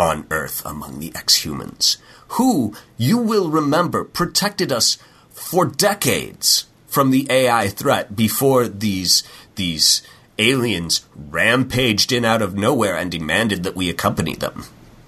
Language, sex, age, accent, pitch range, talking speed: English, male, 30-49, American, 90-125 Hz, 125 wpm